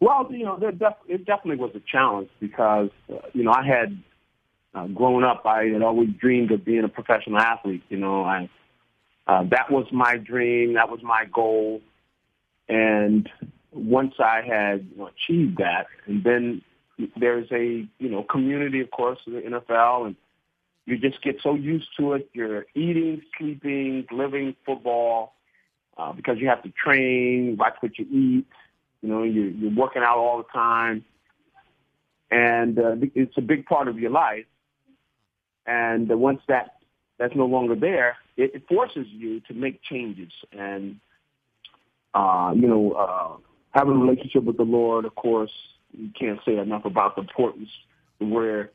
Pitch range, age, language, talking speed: 110-135 Hz, 40-59, English, 160 wpm